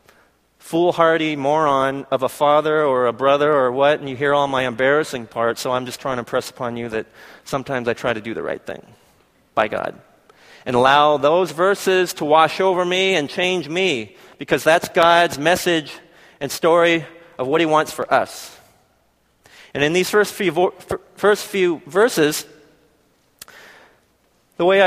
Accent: American